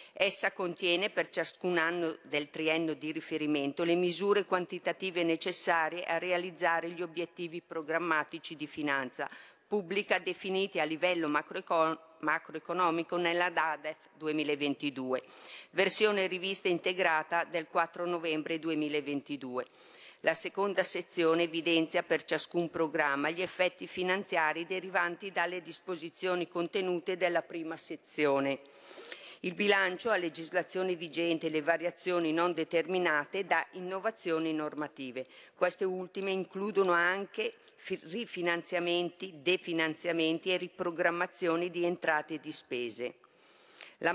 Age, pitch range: 50-69, 160-185 Hz